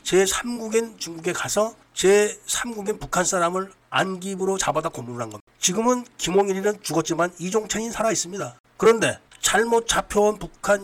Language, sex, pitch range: Korean, male, 165-210 Hz